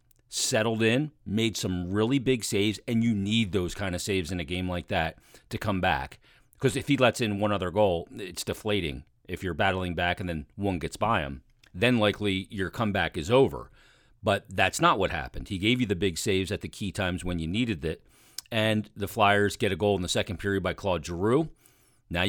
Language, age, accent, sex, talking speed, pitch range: English, 40-59, American, male, 220 wpm, 95-120 Hz